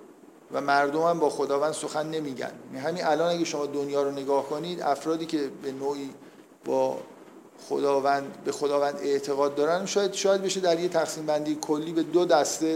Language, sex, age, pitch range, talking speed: Persian, male, 50-69, 140-165 Hz, 165 wpm